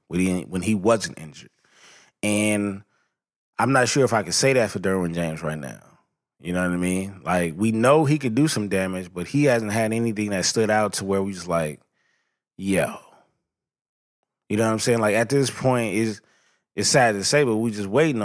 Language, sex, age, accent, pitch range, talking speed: English, male, 20-39, American, 100-125 Hz, 215 wpm